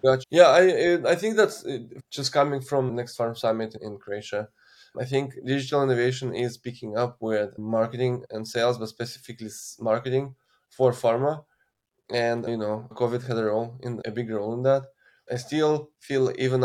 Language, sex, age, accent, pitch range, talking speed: English, male, 20-39, Polish, 115-135 Hz, 175 wpm